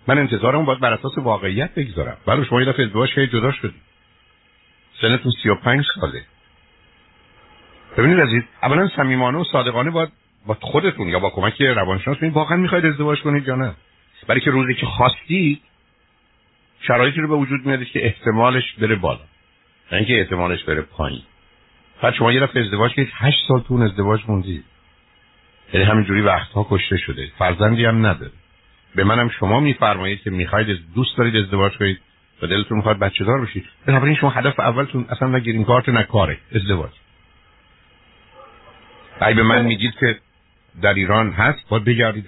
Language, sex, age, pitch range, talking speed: Persian, male, 60-79, 95-130 Hz, 160 wpm